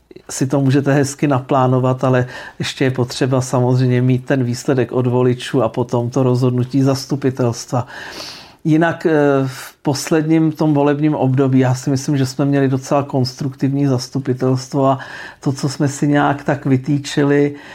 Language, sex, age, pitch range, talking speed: Czech, male, 50-69, 125-140 Hz, 145 wpm